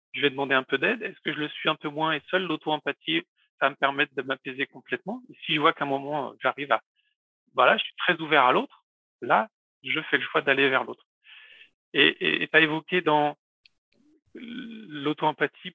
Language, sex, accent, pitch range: French, male, French, 135-170 Hz